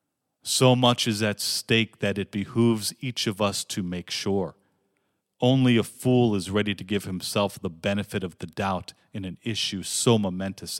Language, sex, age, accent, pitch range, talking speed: English, male, 40-59, American, 100-120 Hz, 180 wpm